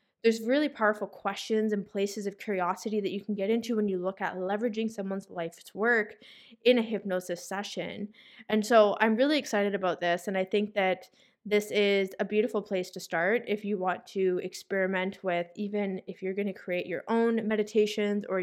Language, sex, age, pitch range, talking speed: English, female, 20-39, 185-215 Hz, 190 wpm